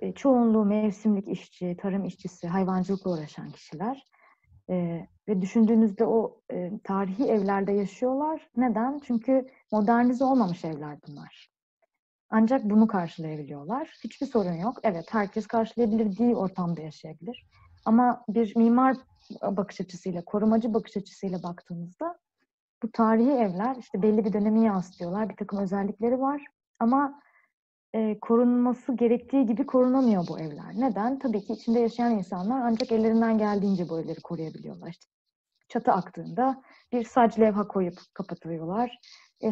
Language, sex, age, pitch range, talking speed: Turkish, female, 30-49, 190-245 Hz, 130 wpm